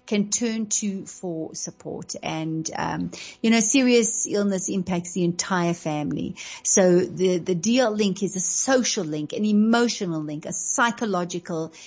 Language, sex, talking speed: English, female, 145 wpm